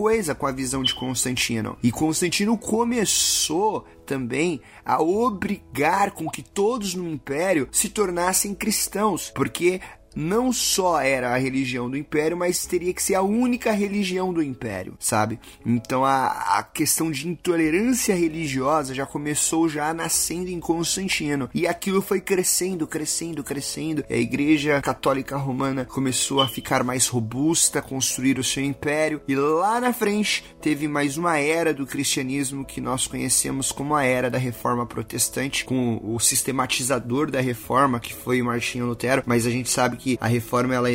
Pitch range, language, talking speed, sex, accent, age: 125-165 Hz, Portuguese, 155 wpm, male, Brazilian, 30-49